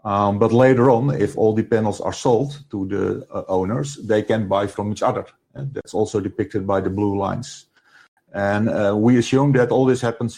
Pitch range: 100-115 Hz